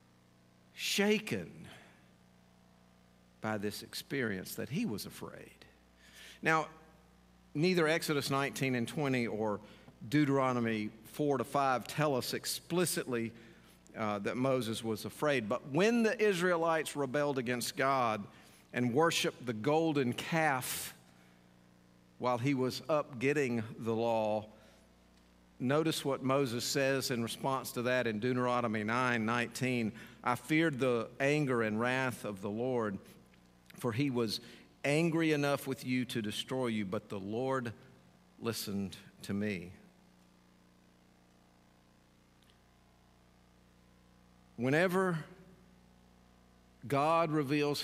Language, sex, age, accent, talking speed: English, male, 50-69, American, 110 wpm